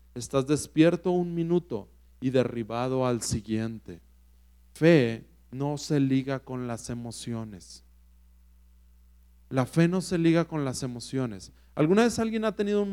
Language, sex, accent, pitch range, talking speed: Spanish, male, Mexican, 95-150 Hz, 135 wpm